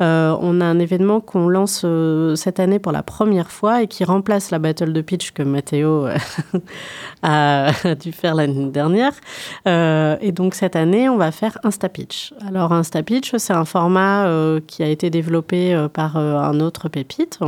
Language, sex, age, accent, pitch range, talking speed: French, female, 30-49, French, 155-190 Hz, 185 wpm